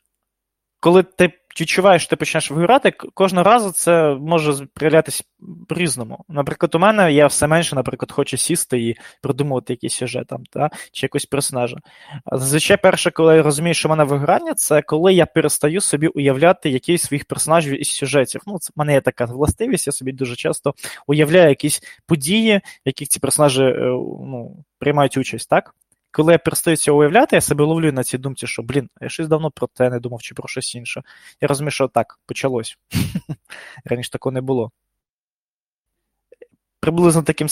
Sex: male